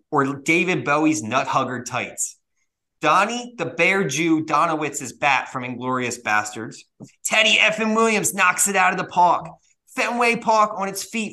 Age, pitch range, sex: 30-49, 145-205 Hz, male